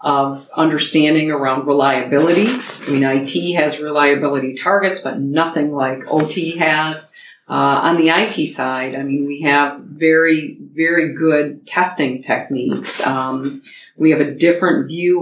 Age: 40-59